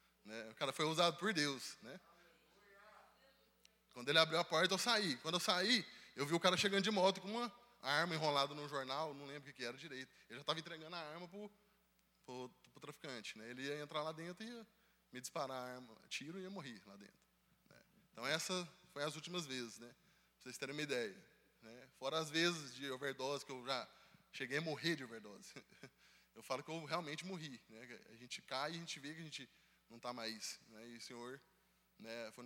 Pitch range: 130-180 Hz